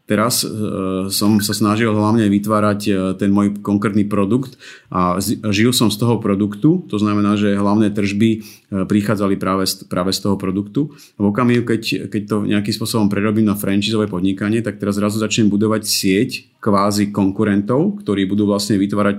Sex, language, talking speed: male, Slovak, 160 wpm